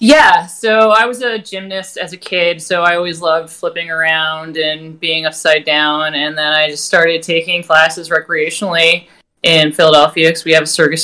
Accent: American